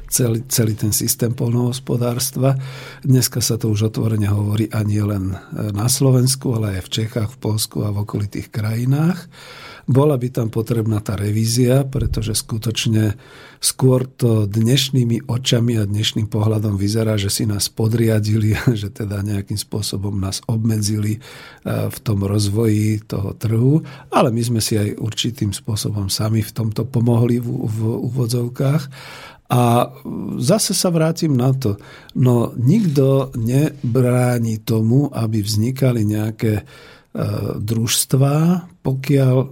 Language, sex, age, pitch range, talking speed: Slovak, male, 50-69, 110-130 Hz, 130 wpm